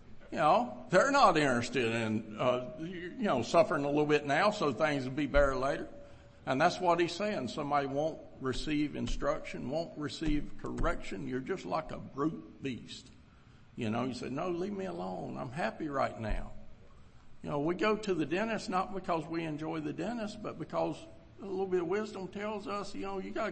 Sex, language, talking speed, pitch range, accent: male, English, 195 wpm, 140-195 Hz, American